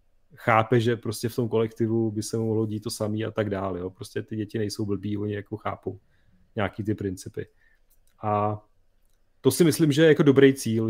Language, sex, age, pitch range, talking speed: Czech, male, 30-49, 105-125 Hz, 205 wpm